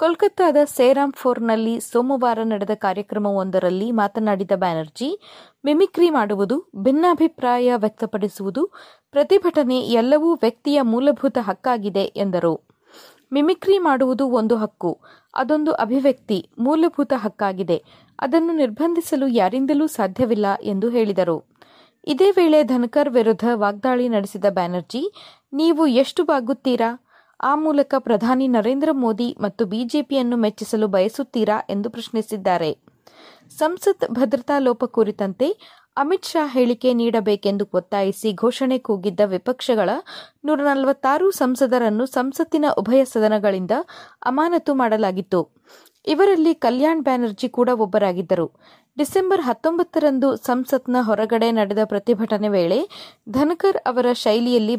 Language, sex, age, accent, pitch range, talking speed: Kannada, female, 30-49, native, 215-290 Hz, 95 wpm